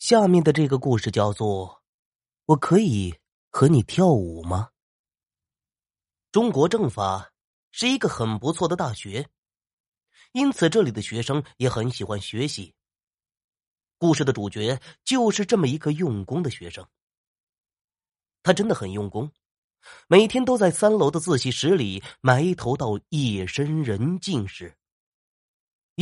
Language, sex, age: Chinese, male, 30-49